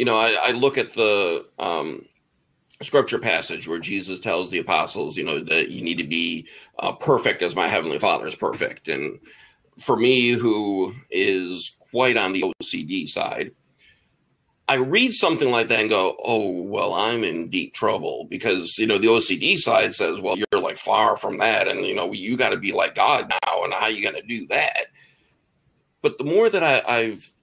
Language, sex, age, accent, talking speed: English, male, 40-59, American, 195 wpm